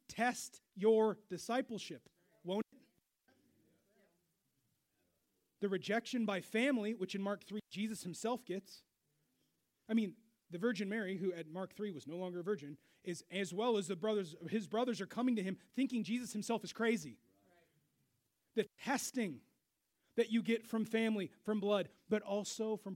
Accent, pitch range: American, 185-250 Hz